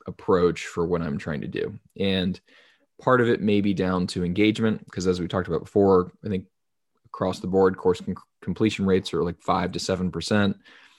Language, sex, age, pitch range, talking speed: English, male, 20-39, 90-105 Hz, 195 wpm